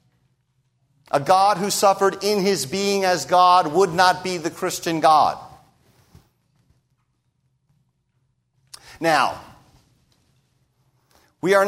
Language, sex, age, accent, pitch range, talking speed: English, male, 50-69, American, 130-185 Hz, 90 wpm